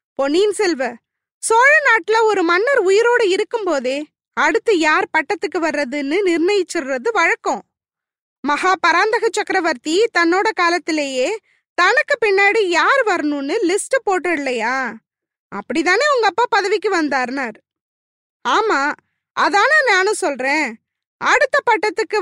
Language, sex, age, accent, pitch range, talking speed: Tamil, female, 20-39, native, 310-425 Hz, 75 wpm